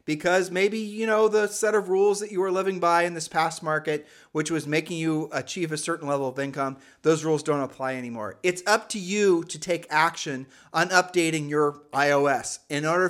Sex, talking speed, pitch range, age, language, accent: male, 205 wpm, 145-175 Hz, 40-59, English, American